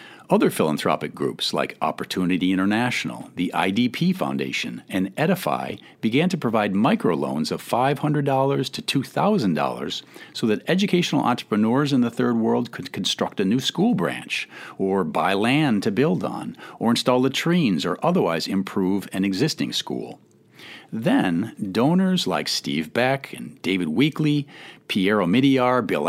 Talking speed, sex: 135 wpm, male